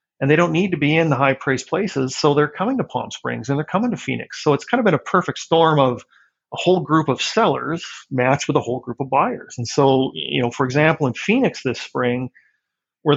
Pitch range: 130-160 Hz